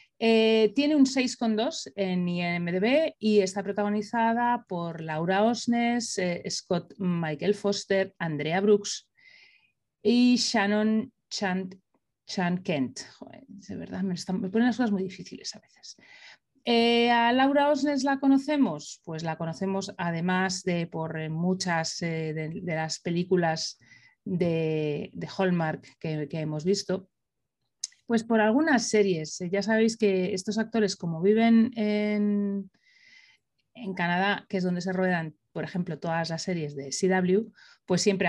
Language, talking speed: Spanish, 135 wpm